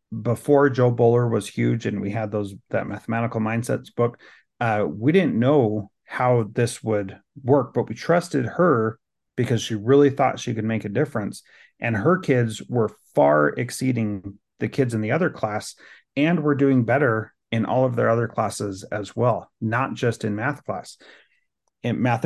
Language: English